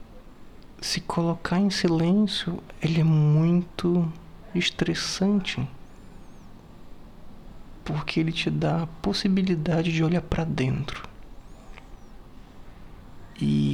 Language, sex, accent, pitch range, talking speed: Portuguese, male, Brazilian, 105-170 Hz, 85 wpm